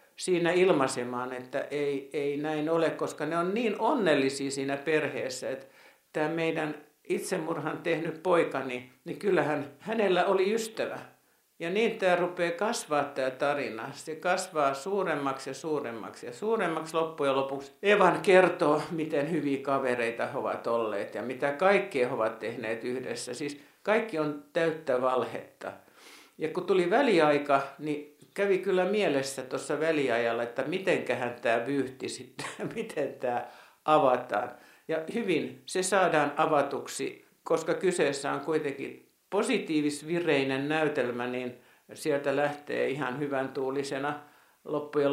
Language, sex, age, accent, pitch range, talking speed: Finnish, male, 60-79, native, 135-170 Hz, 130 wpm